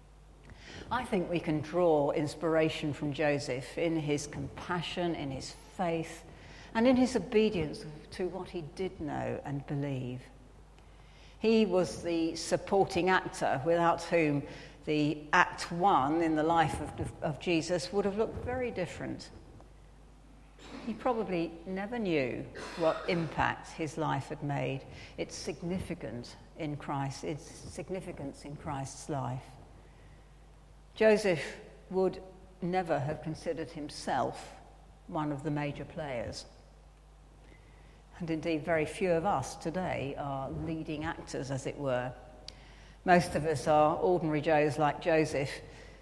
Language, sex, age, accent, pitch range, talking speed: English, female, 60-79, British, 150-180 Hz, 125 wpm